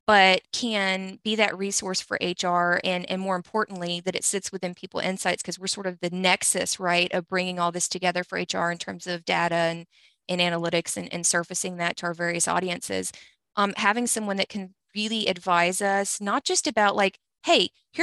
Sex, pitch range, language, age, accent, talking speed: female, 180-205 Hz, English, 20-39, American, 200 wpm